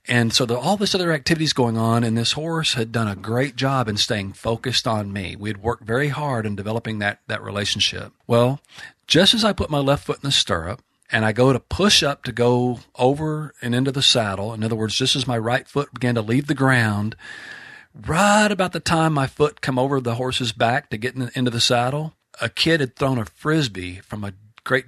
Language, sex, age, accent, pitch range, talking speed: English, male, 40-59, American, 110-135 Hz, 230 wpm